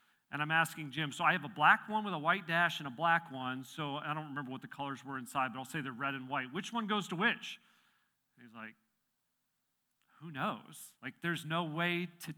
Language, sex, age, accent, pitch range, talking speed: English, male, 40-59, American, 135-175 Hz, 235 wpm